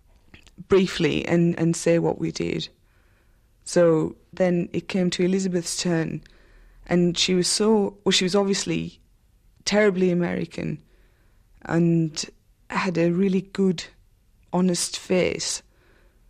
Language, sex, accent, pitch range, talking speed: English, female, British, 160-185 Hz, 115 wpm